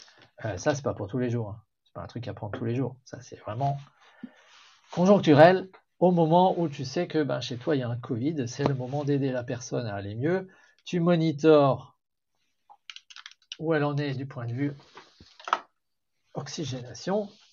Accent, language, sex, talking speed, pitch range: French, French, male, 190 wpm, 125-160 Hz